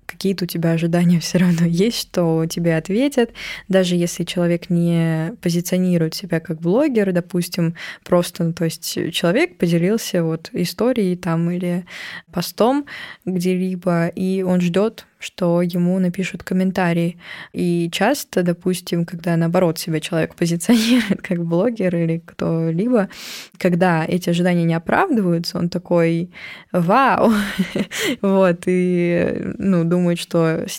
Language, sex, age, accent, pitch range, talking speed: Russian, female, 20-39, native, 170-190 Hz, 125 wpm